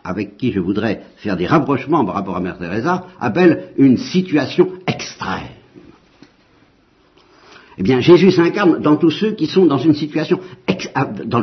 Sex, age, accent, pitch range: male, 60-79, French, 105-155 Hz